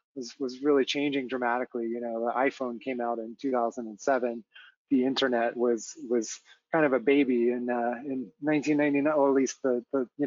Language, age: English, 30-49